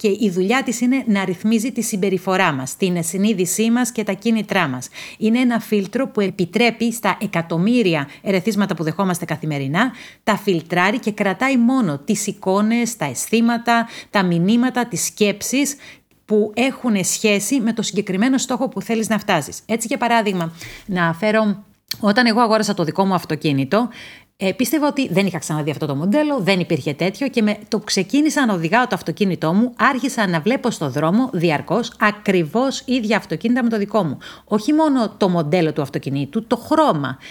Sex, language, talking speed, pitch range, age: female, Greek, 170 wpm, 175-240 Hz, 40-59